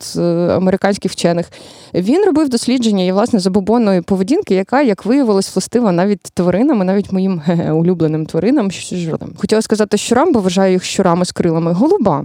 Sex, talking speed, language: female, 155 wpm, Ukrainian